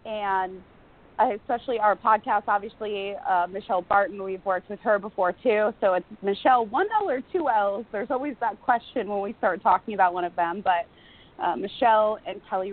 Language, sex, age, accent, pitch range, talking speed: English, female, 20-39, American, 180-220 Hz, 185 wpm